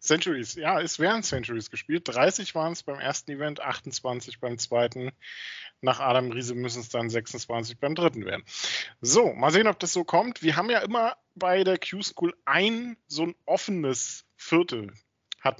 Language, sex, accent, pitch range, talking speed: German, male, German, 130-175 Hz, 175 wpm